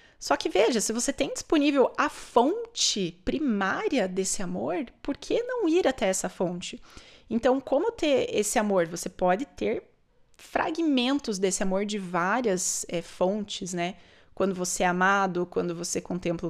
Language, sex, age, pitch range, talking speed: Portuguese, female, 20-39, 180-240 Hz, 150 wpm